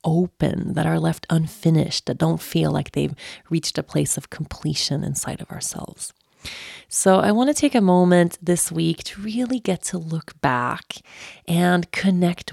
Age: 30-49